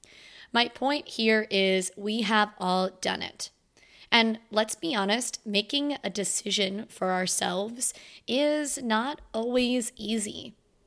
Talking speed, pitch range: 120 wpm, 200-250 Hz